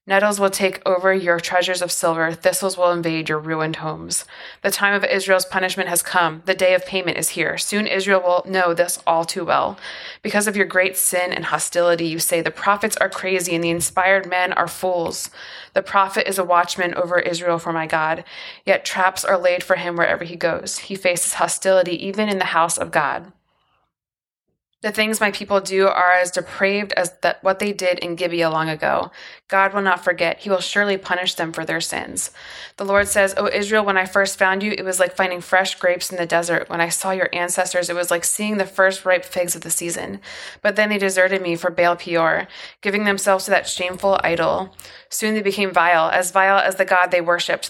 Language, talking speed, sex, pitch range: English, 215 wpm, female, 170-195 Hz